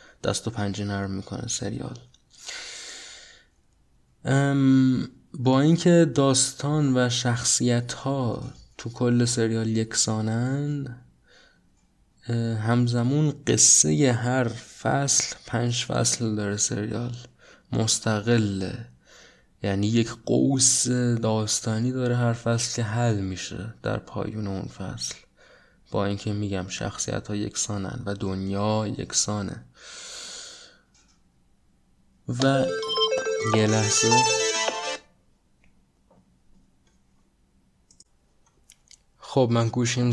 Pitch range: 105-125 Hz